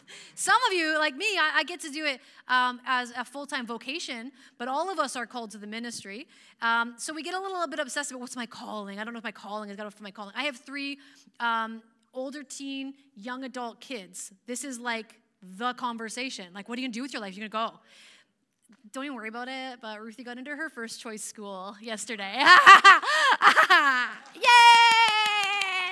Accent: American